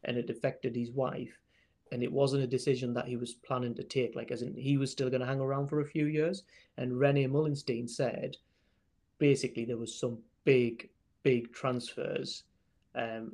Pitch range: 120-140 Hz